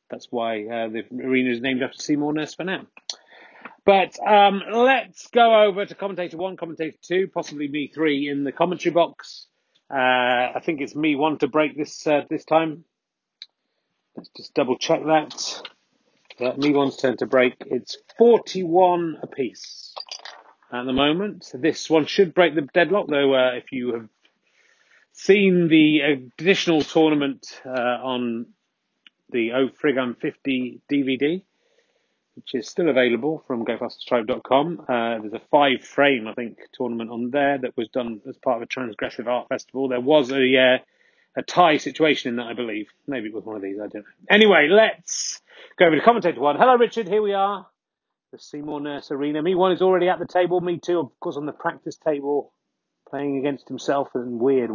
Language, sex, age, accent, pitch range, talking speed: English, male, 30-49, British, 130-175 Hz, 180 wpm